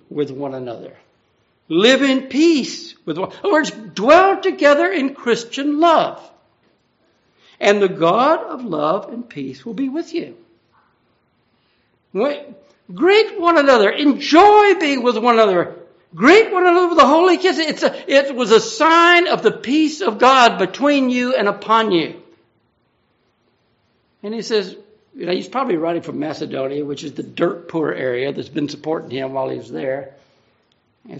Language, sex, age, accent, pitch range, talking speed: English, male, 60-79, American, 185-295 Hz, 155 wpm